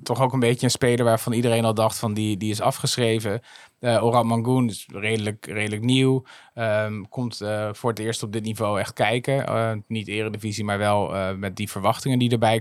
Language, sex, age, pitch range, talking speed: Dutch, male, 20-39, 115-135 Hz, 210 wpm